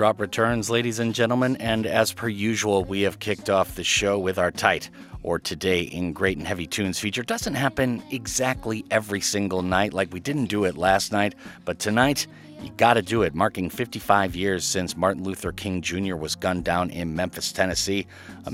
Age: 40-59